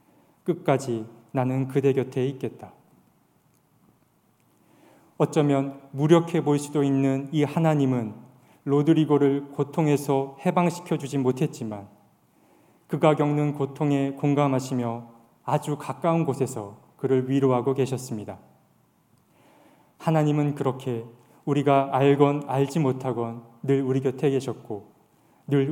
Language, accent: Korean, native